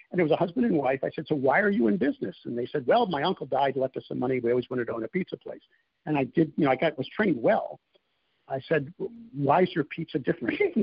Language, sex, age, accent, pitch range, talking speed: English, male, 60-79, American, 135-205 Hz, 295 wpm